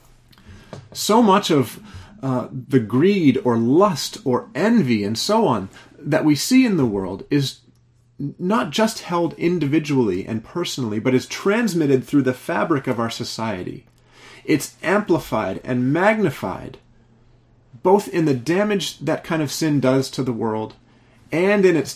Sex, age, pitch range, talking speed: male, 30-49, 120-155 Hz, 150 wpm